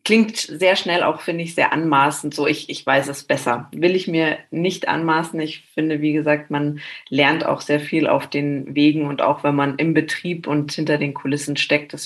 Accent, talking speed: German, 215 wpm